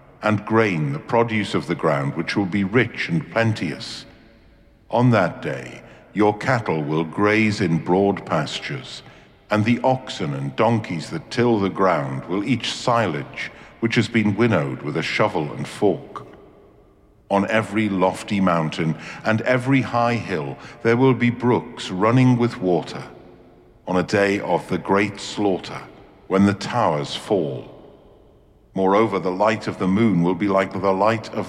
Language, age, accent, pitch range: English, 50-69, British, 90-115 Hz